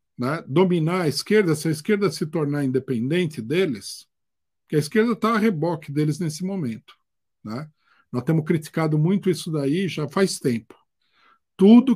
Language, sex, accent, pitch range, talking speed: Portuguese, male, Brazilian, 150-200 Hz, 155 wpm